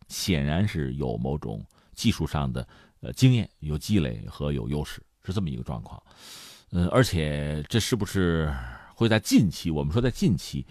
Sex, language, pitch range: male, Chinese, 75-115 Hz